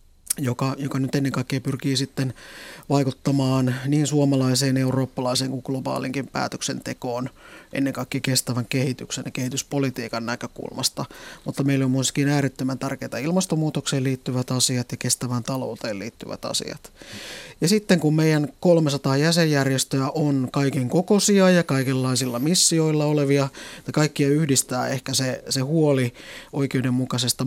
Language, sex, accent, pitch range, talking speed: Finnish, male, native, 130-145 Hz, 120 wpm